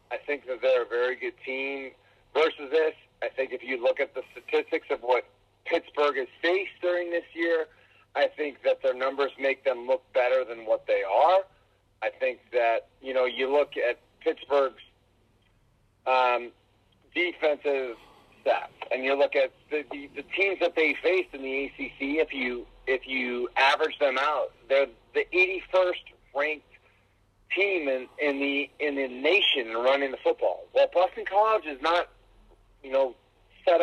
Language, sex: English, male